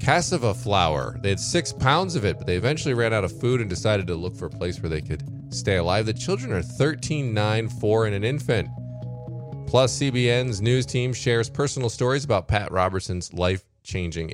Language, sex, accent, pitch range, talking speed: English, male, American, 90-125 Hz, 195 wpm